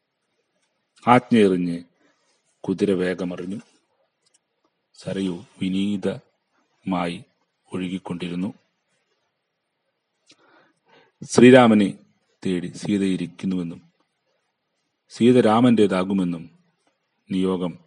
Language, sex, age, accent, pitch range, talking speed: Malayalam, male, 40-59, native, 90-110 Hz, 40 wpm